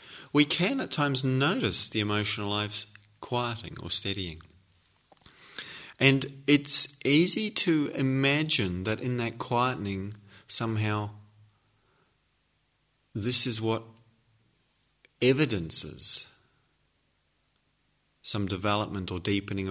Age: 30-49